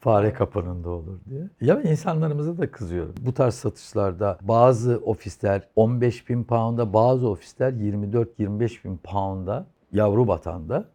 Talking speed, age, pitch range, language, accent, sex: 115 wpm, 60-79, 110-170 Hz, Turkish, native, male